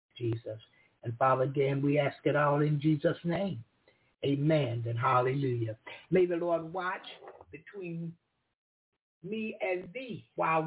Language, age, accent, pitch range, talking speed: English, 60-79, American, 140-190 Hz, 130 wpm